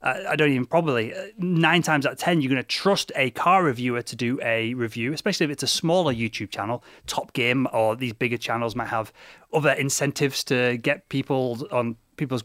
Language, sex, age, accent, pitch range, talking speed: English, male, 30-49, British, 120-170 Hz, 210 wpm